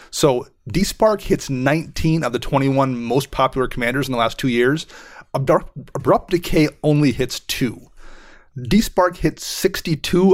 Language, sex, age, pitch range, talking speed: English, male, 30-49, 130-150 Hz, 135 wpm